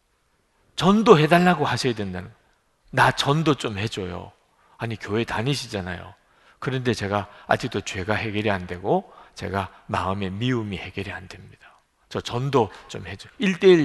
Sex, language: male, Korean